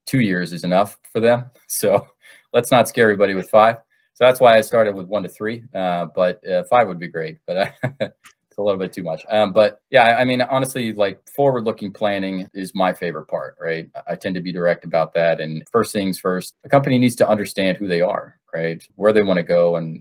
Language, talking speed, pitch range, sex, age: English, 230 wpm, 85-100 Hz, male, 30-49